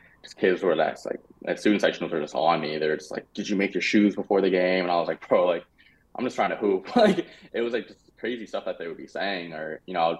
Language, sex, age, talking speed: English, male, 20-39, 295 wpm